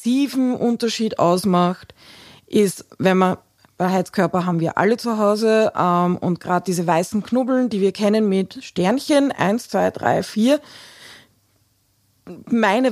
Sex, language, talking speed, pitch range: female, German, 130 wpm, 175-220 Hz